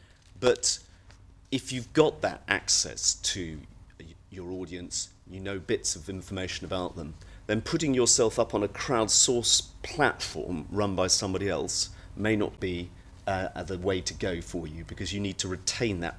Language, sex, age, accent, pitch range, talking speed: English, male, 40-59, British, 90-110 Hz, 165 wpm